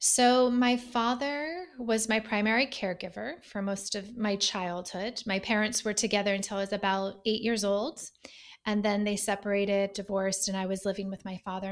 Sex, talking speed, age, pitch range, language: female, 180 wpm, 20-39, 200-235 Hz, English